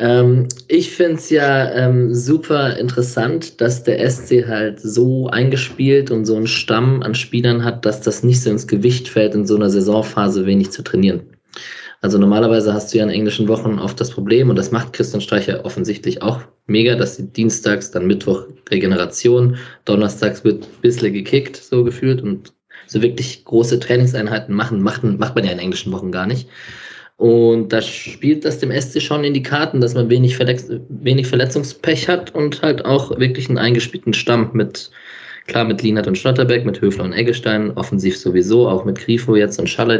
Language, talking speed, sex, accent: German, 180 wpm, male, German